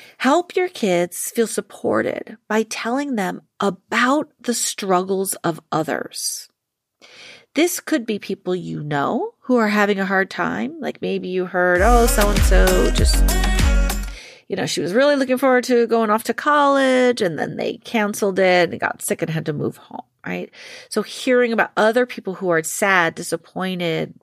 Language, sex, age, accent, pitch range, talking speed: English, female, 40-59, American, 195-250 Hz, 165 wpm